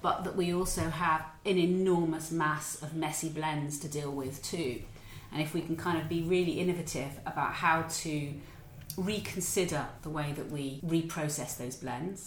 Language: English